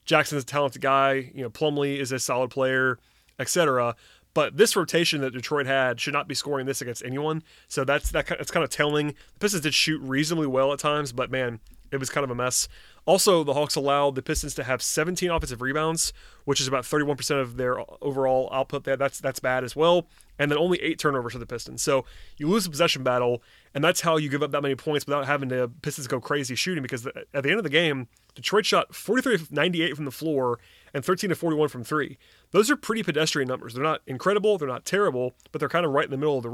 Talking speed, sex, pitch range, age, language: 230 wpm, male, 130-155 Hz, 30-49, English